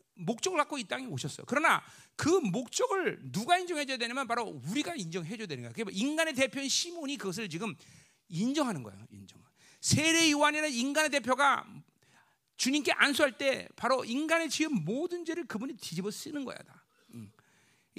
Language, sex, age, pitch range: Korean, male, 40-59, 235-395 Hz